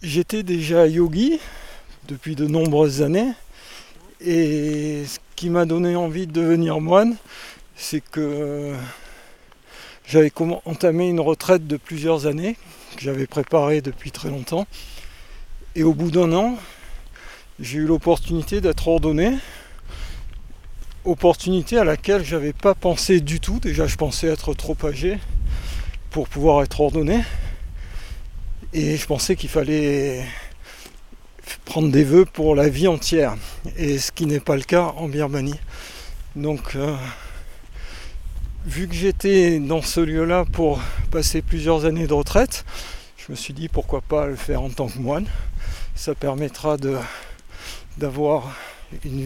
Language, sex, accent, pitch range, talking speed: French, male, French, 140-170 Hz, 135 wpm